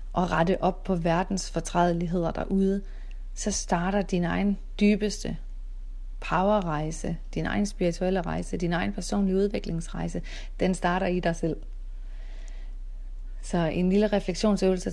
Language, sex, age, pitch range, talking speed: Danish, female, 30-49, 165-185 Hz, 120 wpm